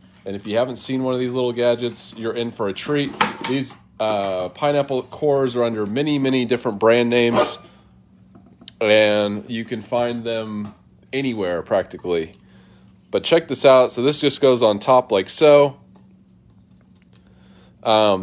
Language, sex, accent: English, male, American